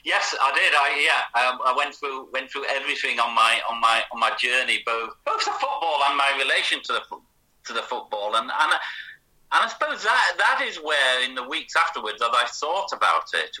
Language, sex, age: English, male, 30-49